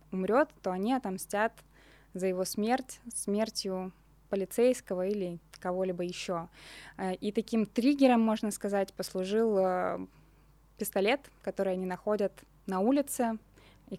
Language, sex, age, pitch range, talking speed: Russian, female, 20-39, 185-220 Hz, 105 wpm